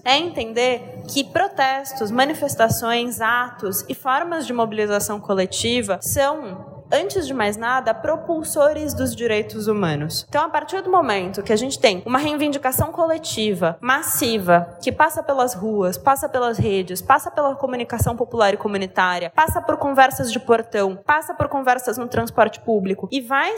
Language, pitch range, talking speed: Portuguese, 230-300 Hz, 150 wpm